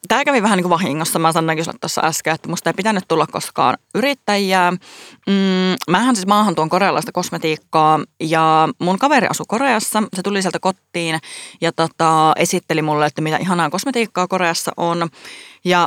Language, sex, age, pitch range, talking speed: Finnish, female, 30-49, 160-195 Hz, 165 wpm